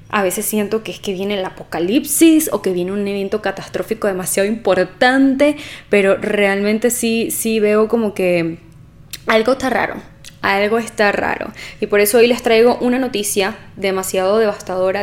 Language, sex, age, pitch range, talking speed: Spanish, female, 10-29, 195-230 Hz, 160 wpm